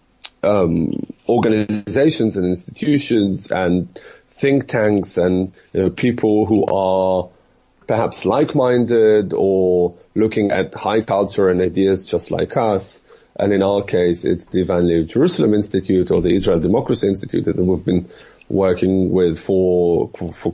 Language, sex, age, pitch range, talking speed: English, male, 30-49, 90-110 Hz, 140 wpm